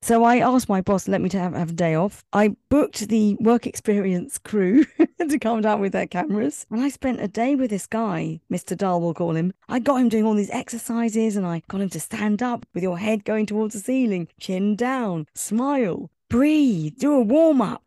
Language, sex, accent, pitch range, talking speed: English, female, British, 200-270 Hz, 220 wpm